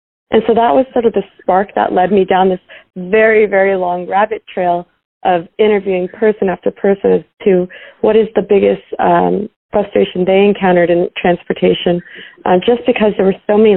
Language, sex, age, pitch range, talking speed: English, female, 40-59, 180-200 Hz, 185 wpm